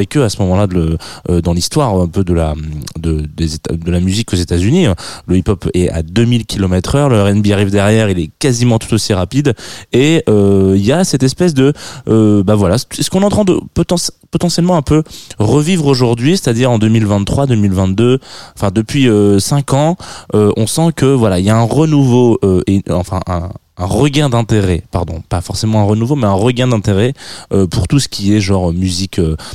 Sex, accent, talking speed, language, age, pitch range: male, French, 205 wpm, French, 20-39, 90-130 Hz